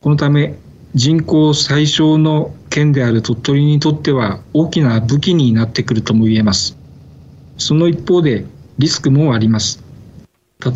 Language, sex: Japanese, male